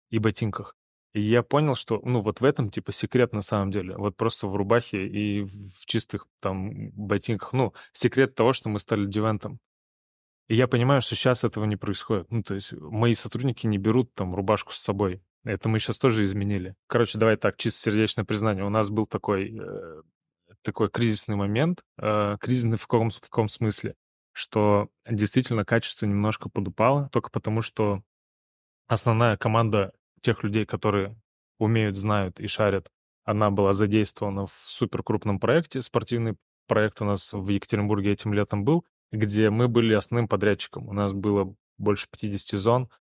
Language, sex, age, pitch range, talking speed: Russian, male, 20-39, 100-115 Hz, 165 wpm